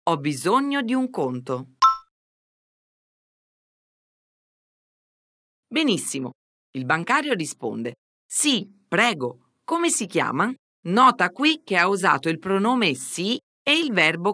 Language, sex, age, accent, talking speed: Portuguese, female, 40-59, Italian, 105 wpm